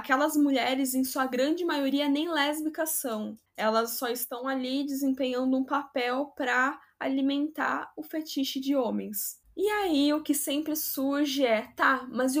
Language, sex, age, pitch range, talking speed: Portuguese, female, 10-29, 245-295 Hz, 155 wpm